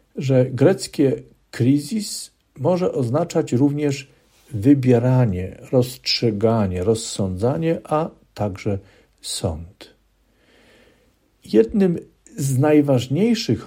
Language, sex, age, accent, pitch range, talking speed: Polish, male, 50-69, native, 110-145 Hz, 65 wpm